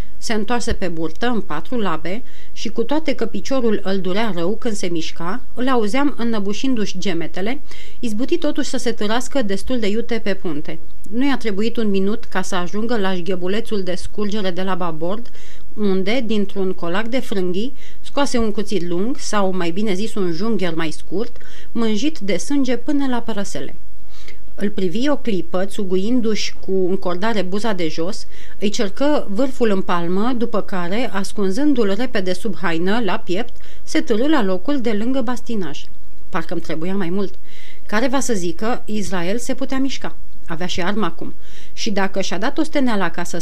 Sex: female